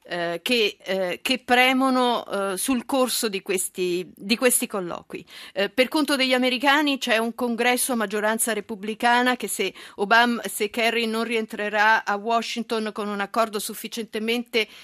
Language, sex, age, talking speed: Italian, female, 50-69, 130 wpm